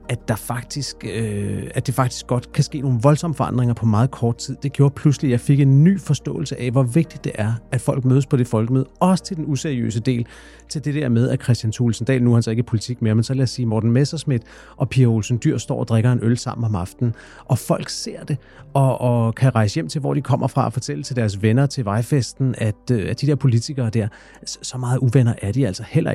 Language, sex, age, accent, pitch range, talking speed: Danish, male, 40-59, native, 120-140 Hz, 250 wpm